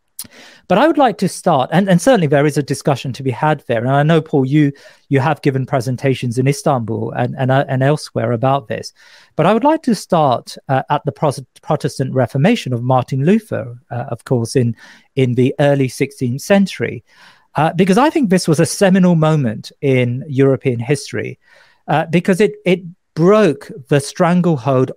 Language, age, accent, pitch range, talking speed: English, 40-59, British, 125-165 Hz, 185 wpm